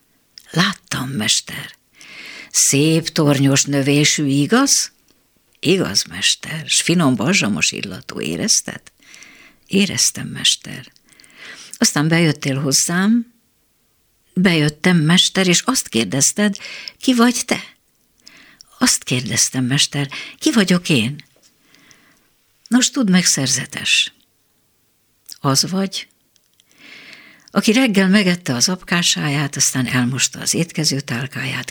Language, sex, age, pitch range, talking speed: Hungarian, female, 60-79, 135-195 Hz, 90 wpm